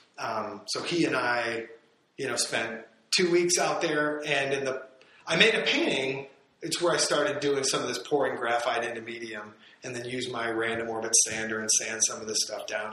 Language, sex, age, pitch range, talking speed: English, male, 30-49, 120-150 Hz, 210 wpm